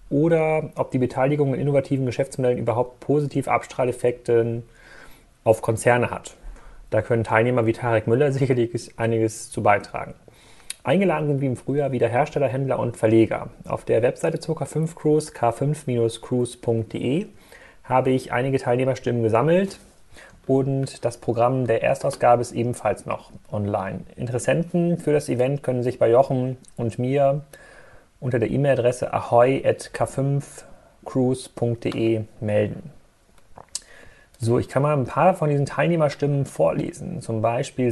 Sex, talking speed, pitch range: male, 130 wpm, 115-140 Hz